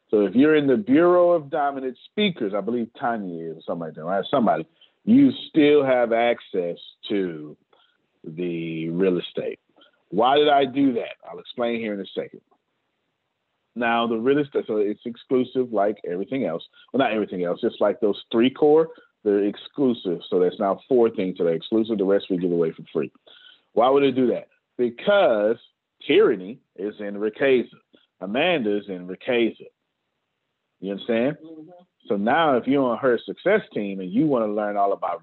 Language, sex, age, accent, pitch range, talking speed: English, male, 40-59, American, 100-135 Hz, 180 wpm